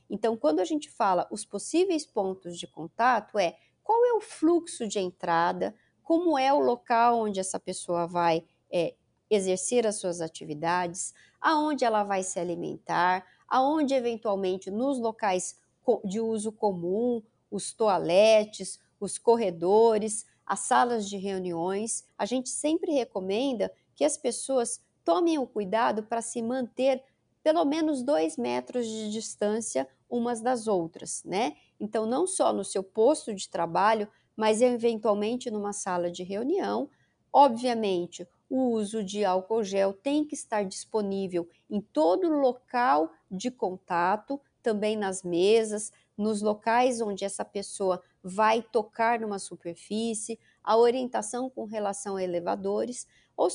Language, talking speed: Portuguese, 135 wpm